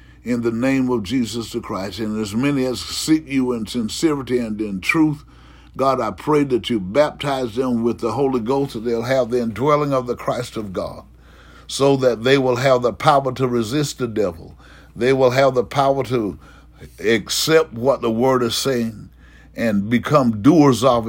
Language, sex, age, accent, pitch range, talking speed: English, male, 60-79, American, 110-130 Hz, 190 wpm